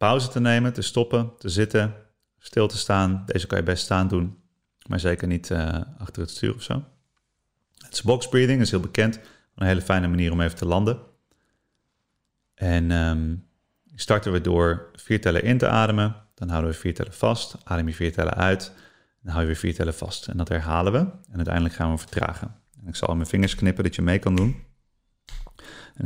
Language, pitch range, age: Dutch, 85-110 Hz, 30-49